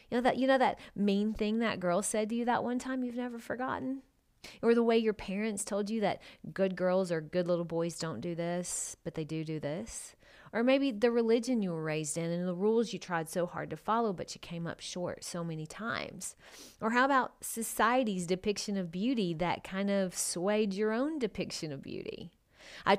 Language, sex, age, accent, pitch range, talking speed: English, female, 30-49, American, 175-235 Hz, 210 wpm